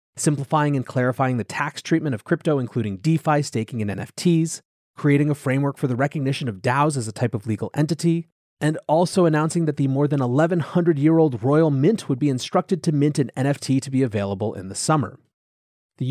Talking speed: 190 wpm